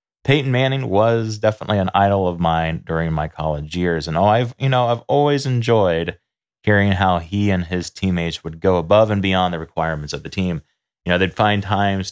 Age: 30-49